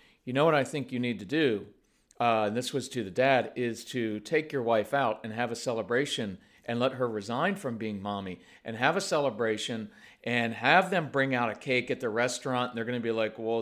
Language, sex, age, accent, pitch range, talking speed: English, male, 40-59, American, 120-150 Hz, 240 wpm